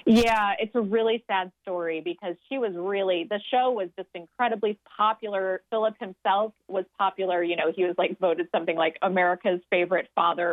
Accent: American